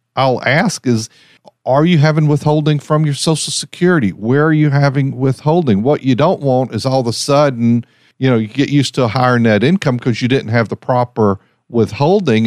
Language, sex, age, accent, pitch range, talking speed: English, male, 50-69, American, 120-155 Hz, 200 wpm